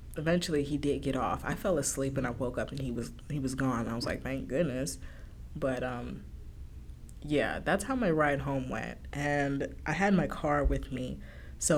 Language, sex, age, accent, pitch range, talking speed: English, female, 20-39, American, 125-150 Hz, 205 wpm